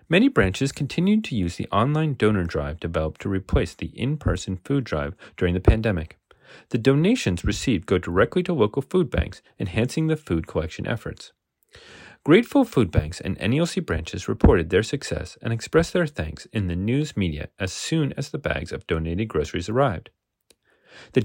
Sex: male